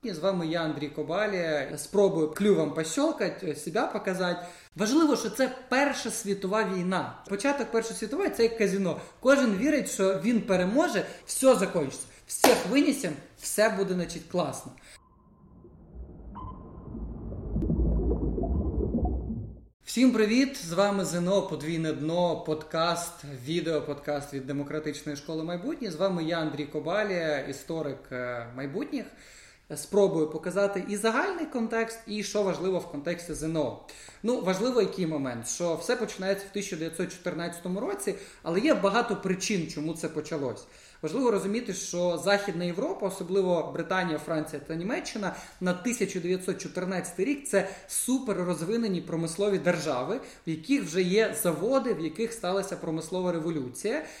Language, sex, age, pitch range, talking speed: Ukrainian, male, 20-39, 160-215 Hz, 125 wpm